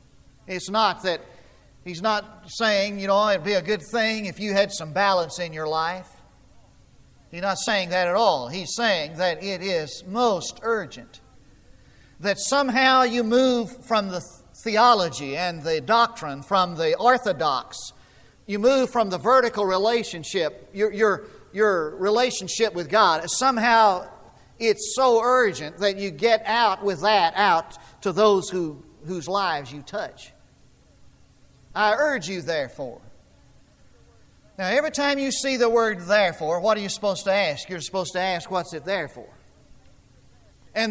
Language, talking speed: English, 155 wpm